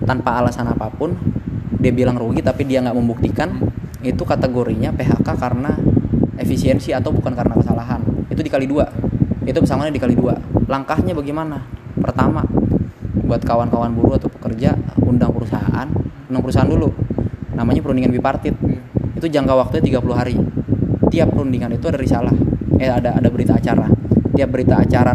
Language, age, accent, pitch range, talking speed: Indonesian, 20-39, native, 115-130 Hz, 145 wpm